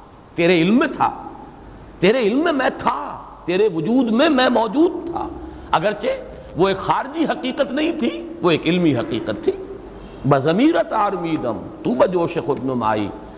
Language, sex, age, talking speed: English, male, 50-69, 145 wpm